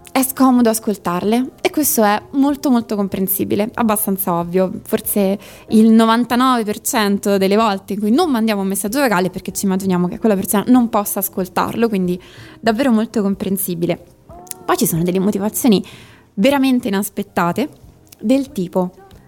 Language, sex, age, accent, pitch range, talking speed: Italian, female, 20-39, native, 190-245 Hz, 140 wpm